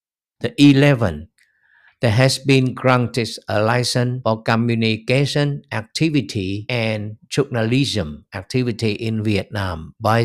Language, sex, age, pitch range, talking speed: Vietnamese, male, 60-79, 105-125 Hz, 100 wpm